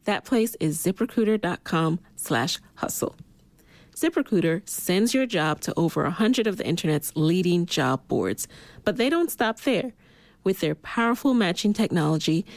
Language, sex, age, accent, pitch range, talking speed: English, female, 30-49, American, 160-225 Hz, 140 wpm